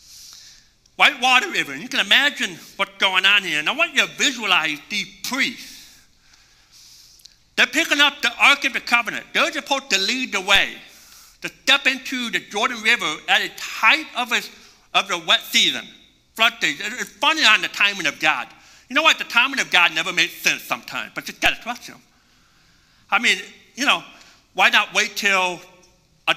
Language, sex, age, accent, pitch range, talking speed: English, male, 60-79, American, 205-285 Hz, 180 wpm